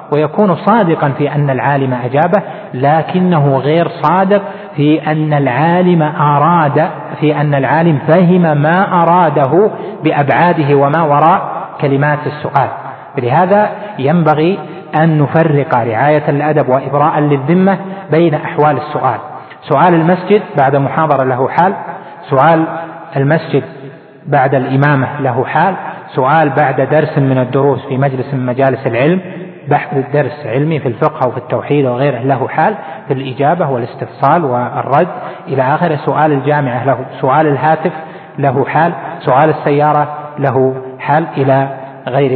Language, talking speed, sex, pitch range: Arabic, 115 wpm, male, 135-160 Hz